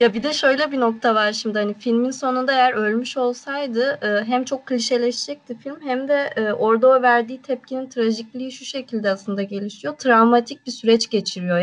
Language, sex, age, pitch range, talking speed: Turkish, female, 20-39, 210-250 Hz, 170 wpm